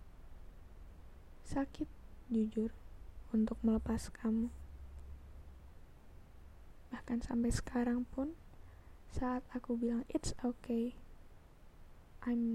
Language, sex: Indonesian, female